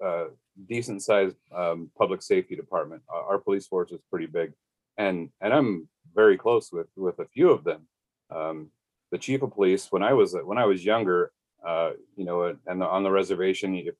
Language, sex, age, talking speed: English, male, 40-59, 180 wpm